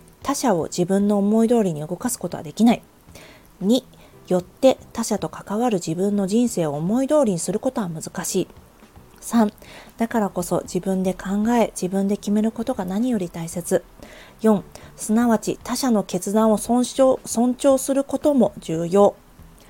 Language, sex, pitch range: Japanese, female, 180-240 Hz